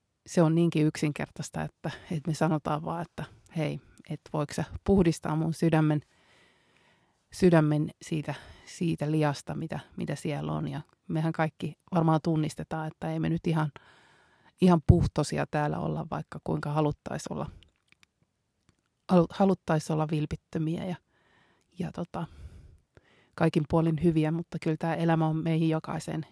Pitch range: 150-175 Hz